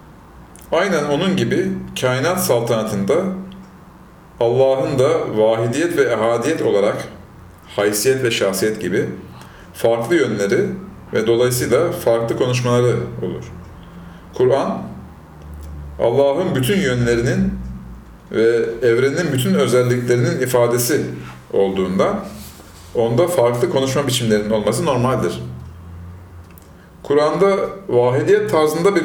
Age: 40-59